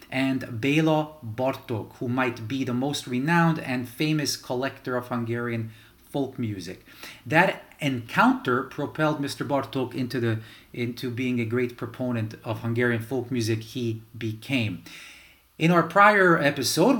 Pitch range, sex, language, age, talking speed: 115-145 Hz, male, English, 30-49, 130 wpm